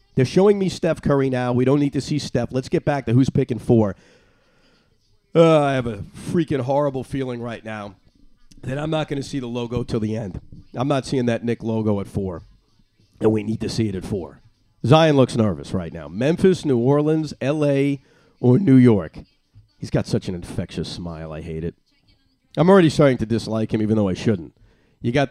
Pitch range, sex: 110-140 Hz, male